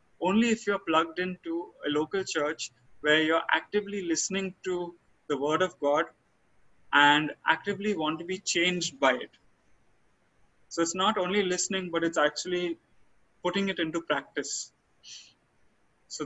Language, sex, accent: English, male, Indian